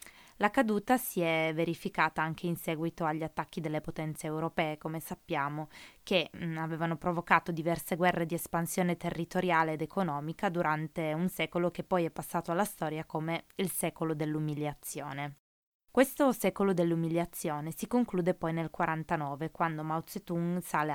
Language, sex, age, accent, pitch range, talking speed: Italian, female, 20-39, native, 155-180 Hz, 145 wpm